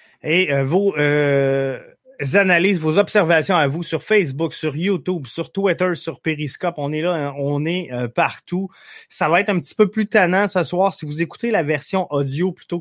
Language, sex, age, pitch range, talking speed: French, male, 20-39, 145-185 Hz, 195 wpm